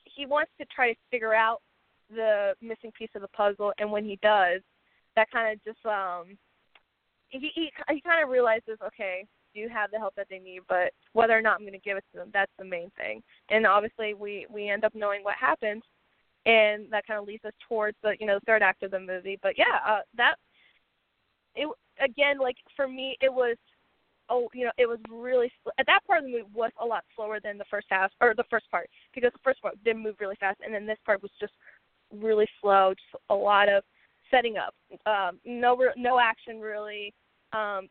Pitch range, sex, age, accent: 205-245 Hz, female, 10-29, American